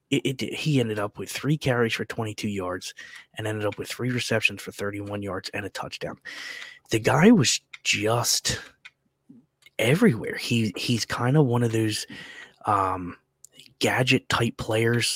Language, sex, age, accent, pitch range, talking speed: English, male, 20-39, American, 100-120 Hz, 155 wpm